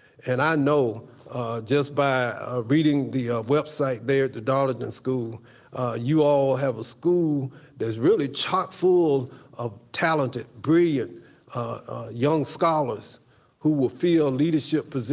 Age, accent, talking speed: 50-69, American, 145 wpm